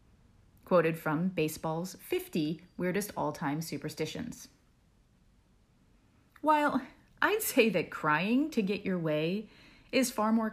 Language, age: English, 30-49